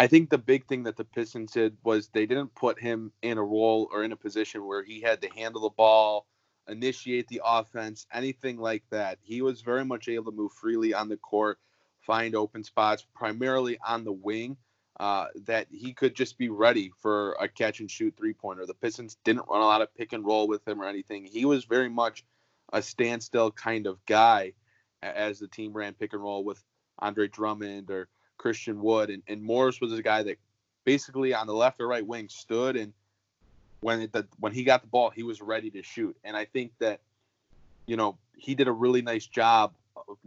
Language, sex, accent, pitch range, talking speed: English, male, American, 105-120 Hz, 215 wpm